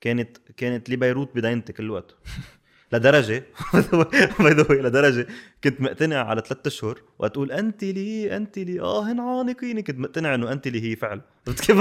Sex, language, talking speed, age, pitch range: male, Arabic, 160 wpm, 20-39, 120-150 Hz